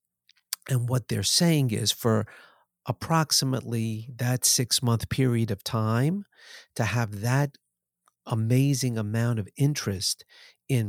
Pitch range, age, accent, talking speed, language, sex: 105-135 Hz, 50-69, American, 110 wpm, English, male